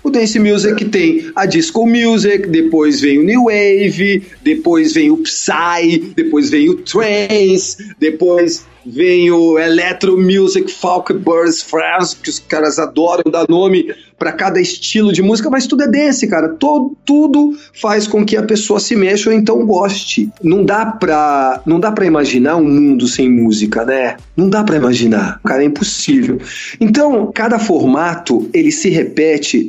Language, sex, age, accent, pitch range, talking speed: Portuguese, male, 40-59, Brazilian, 175-245 Hz, 165 wpm